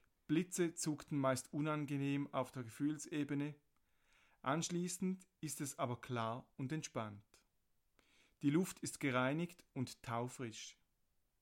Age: 40-59